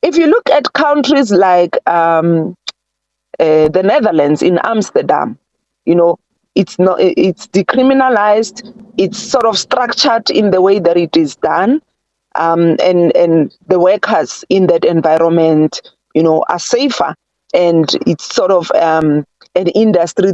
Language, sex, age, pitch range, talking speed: English, female, 40-59, 170-230 Hz, 140 wpm